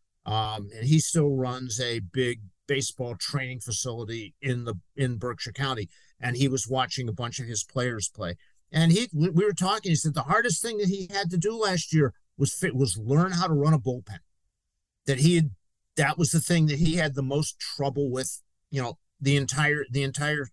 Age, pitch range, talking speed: 50-69, 120-155 Hz, 210 wpm